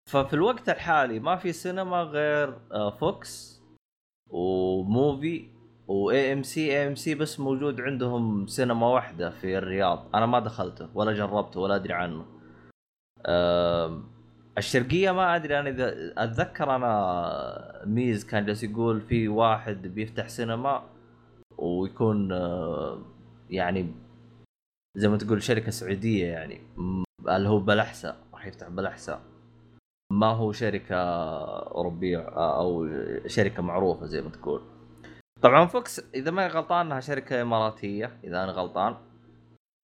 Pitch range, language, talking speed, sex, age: 100-135 Hz, Arabic, 120 wpm, male, 20-39